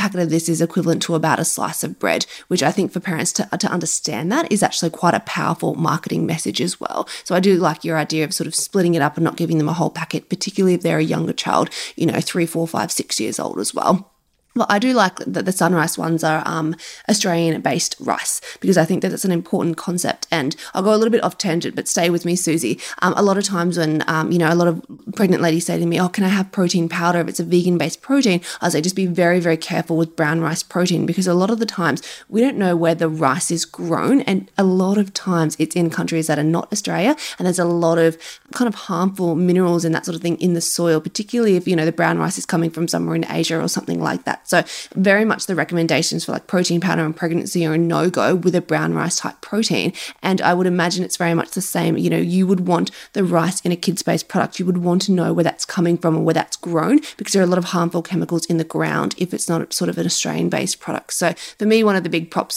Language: English